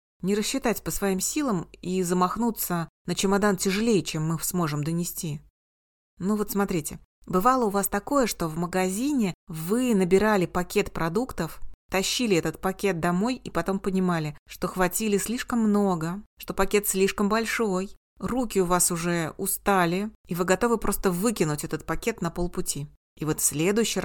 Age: 30-49